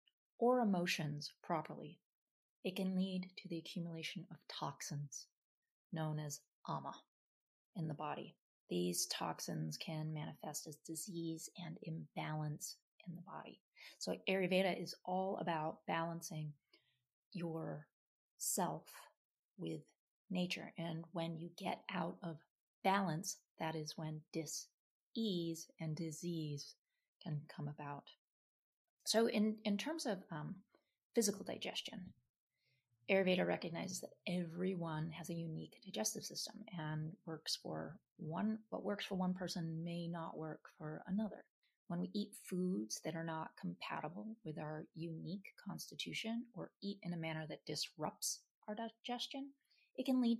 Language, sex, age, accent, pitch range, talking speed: English, female, 30-49, American, 155-200 Hz, 130 wpm